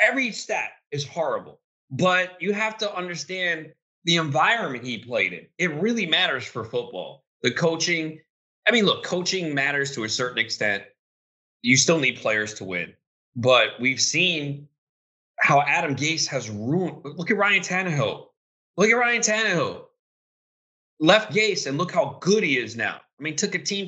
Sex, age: male, 30-49